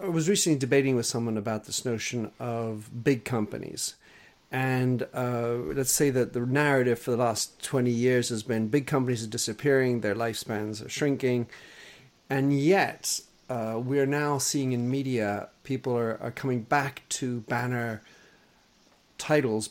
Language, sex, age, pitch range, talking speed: English, male, 40-59, 115-140 Hz, 155 wpm